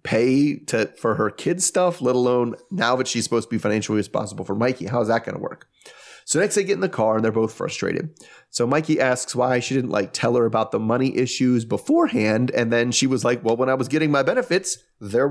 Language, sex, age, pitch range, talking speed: English, male, 30-49, 110-150 Hz, 245 wpm